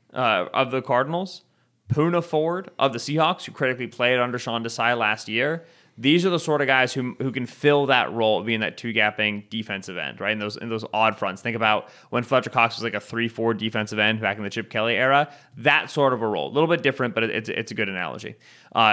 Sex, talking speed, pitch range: male, 240 wpm, 110-130 Hz